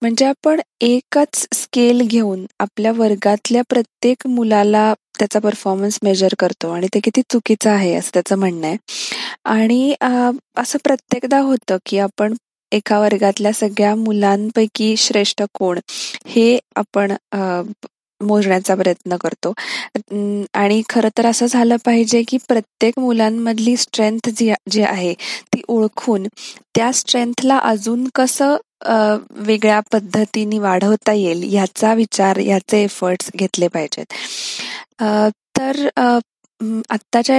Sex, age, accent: female, 20-39, native